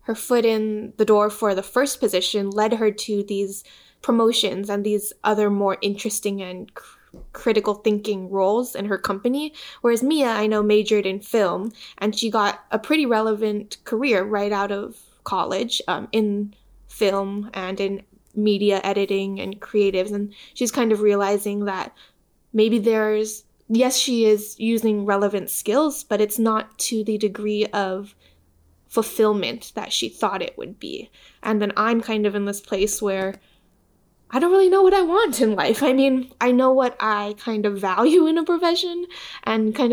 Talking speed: 170 wpm